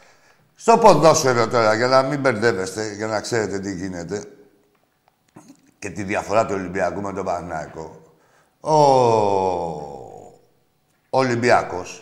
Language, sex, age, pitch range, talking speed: Greek, male, 60-79, 135-170 Hz, 115 wpm